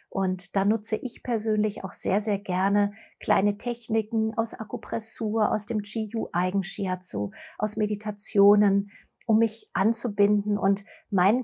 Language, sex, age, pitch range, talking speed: German, female, 40-59, 195-225 Hz, 125 wpm